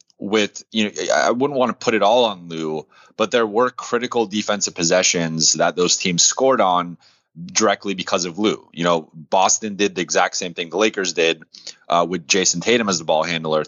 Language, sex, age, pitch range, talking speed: English, male, 30-49, 85-100 Hz, 200 wpm